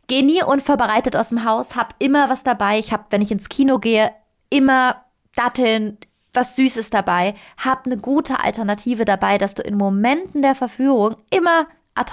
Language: German